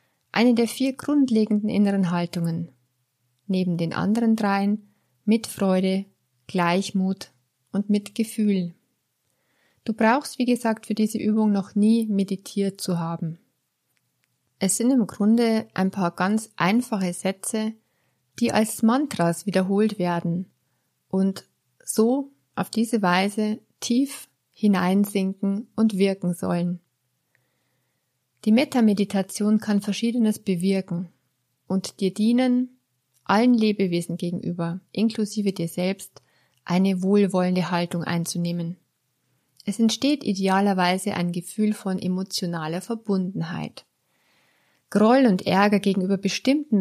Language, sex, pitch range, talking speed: German, female, 175-215 Hz, 105 wpm